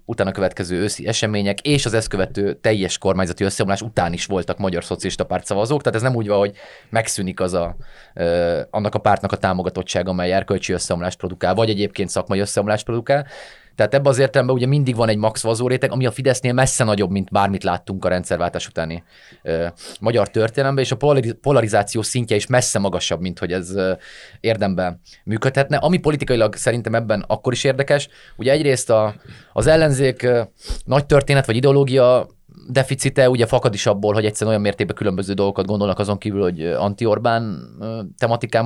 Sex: male